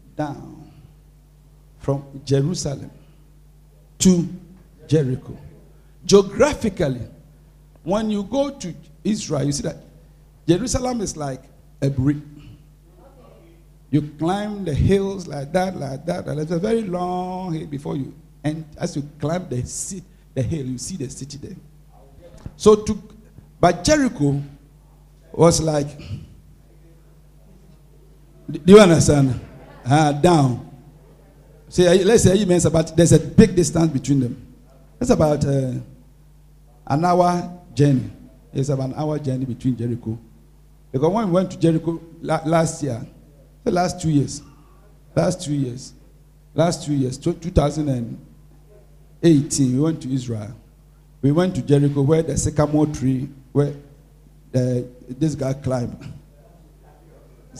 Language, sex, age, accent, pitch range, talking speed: English, male, 60-79, Nigerian, 140-165 Hz, 130 wpm